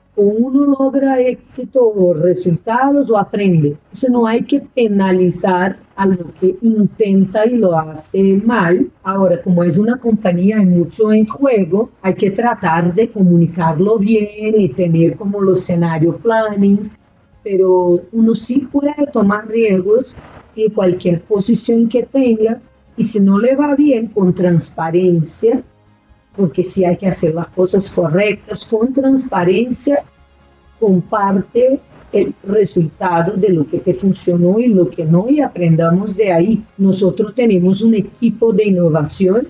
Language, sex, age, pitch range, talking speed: Spanish, female, 40-59, 175-225 Hz, 145 wpm